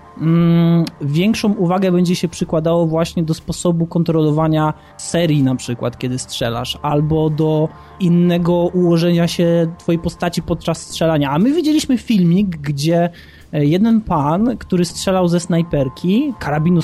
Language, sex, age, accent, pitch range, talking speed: Polish, male, 20-39, native, 160-185 Hz, 125 wpm